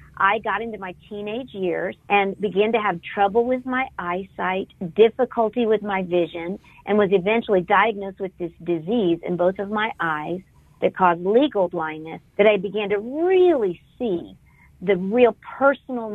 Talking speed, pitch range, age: 160 wpm, 175-235 Hz, 50-69